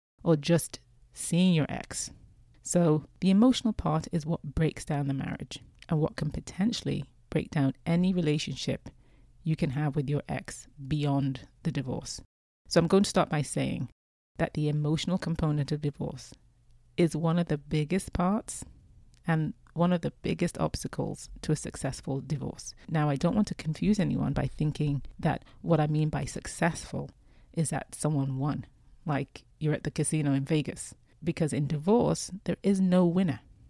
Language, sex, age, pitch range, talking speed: English, female, 30-49, 140-170 Hz, 165 wpm